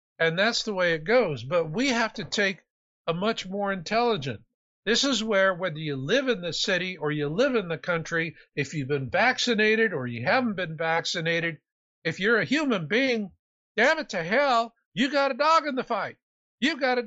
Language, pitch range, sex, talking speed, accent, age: English, 160-240 Hz, male, 205 wpm, American, 60-79